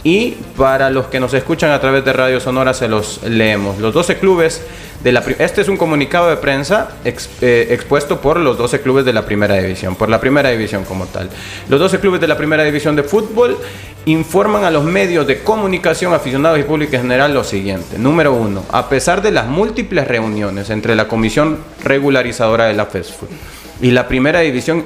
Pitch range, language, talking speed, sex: 120-165 Hz, Spanish, 195 wpm, male